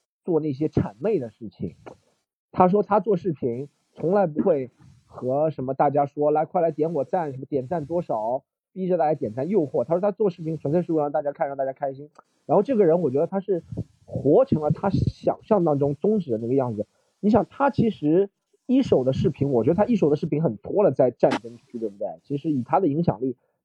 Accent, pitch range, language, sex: native, 135-185 Hz, Chinese, male